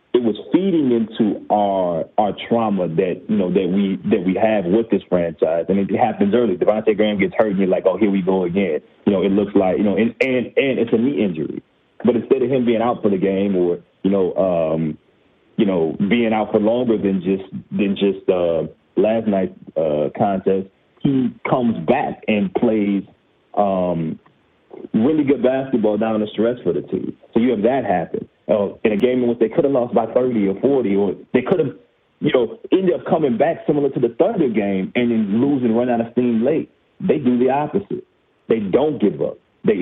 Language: English